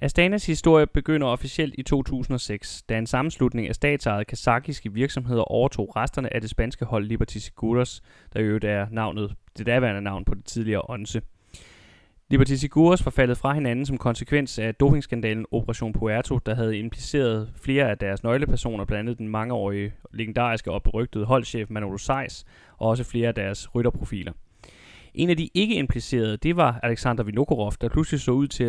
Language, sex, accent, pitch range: Danish, male, native, 105-135 Hz